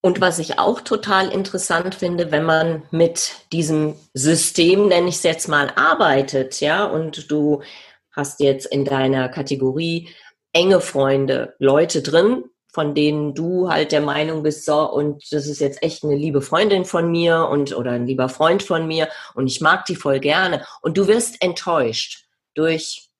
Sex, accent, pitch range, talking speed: female, German, 150-185 Hz, 170 wpm